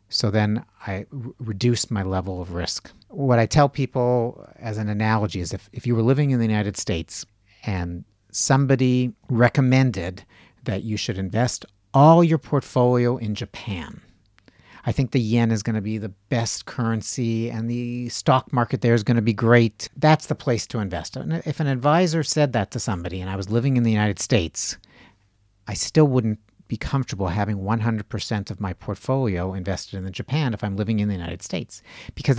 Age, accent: 50-69, American